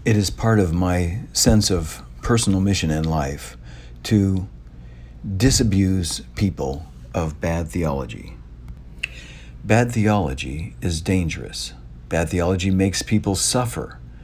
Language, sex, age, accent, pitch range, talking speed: English, male, 60-79, American, 65-105 Hz, 110 wpm